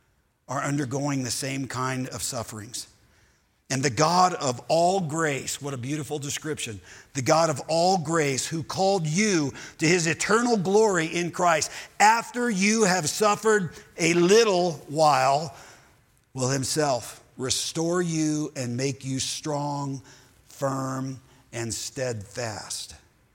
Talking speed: 125 wpm